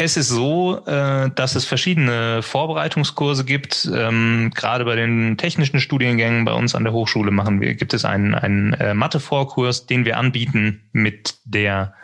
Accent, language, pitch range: German, German, 110-130 Hz